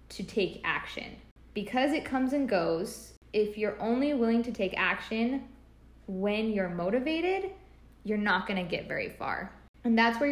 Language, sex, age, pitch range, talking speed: English, female, 10-29, 180-230 Hz, 165 wpm